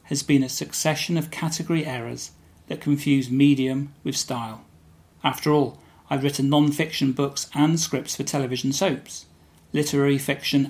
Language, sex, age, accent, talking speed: English, male, 40-59, British, 140 wpm